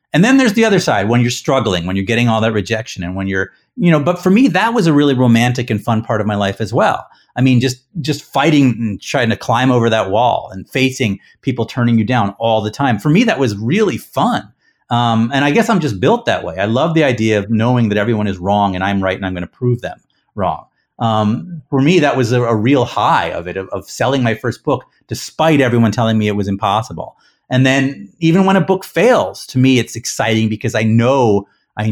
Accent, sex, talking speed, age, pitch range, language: American, male, 245 wpm, 30-49, 110-140 Hz, English